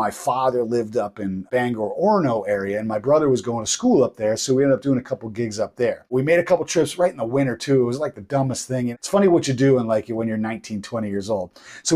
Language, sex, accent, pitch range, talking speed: English, male, American, 110-140 Hz, 285 wpm